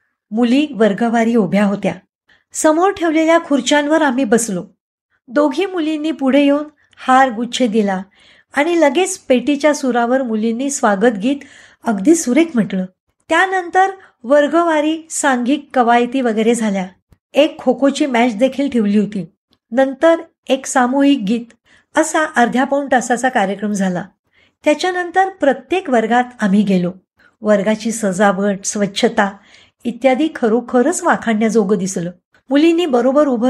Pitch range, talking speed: 215-295 Hz, 105 wpm